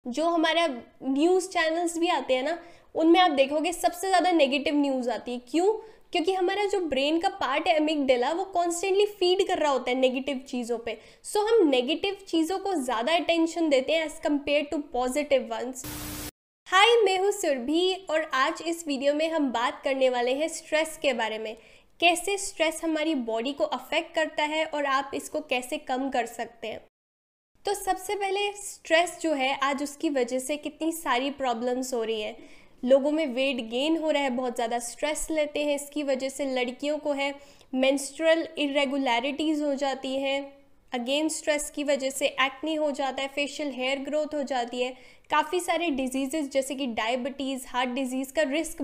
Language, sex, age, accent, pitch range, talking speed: Hindi, female, 10-29, native, 265-330 Hz, 185 wpm